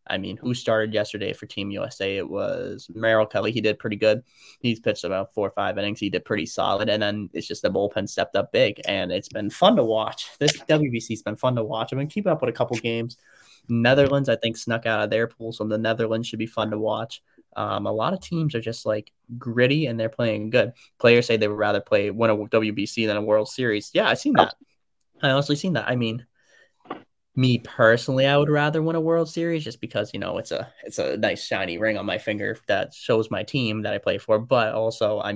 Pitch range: 105-120 Hz